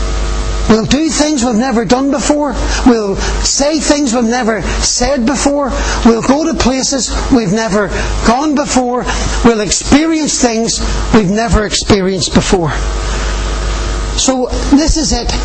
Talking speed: 130 wpm